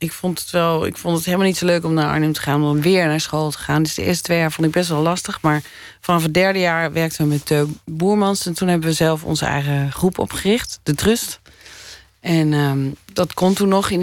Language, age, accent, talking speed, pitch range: Dutch, 40-59, Dutch, 255 wpm, 130-160 Hz